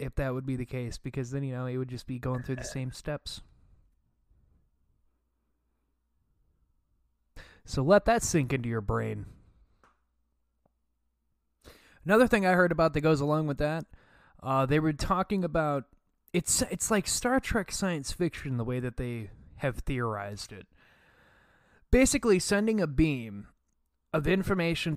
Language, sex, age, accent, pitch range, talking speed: English, male, 20-39, American, 100-155 Hz, 145 wpm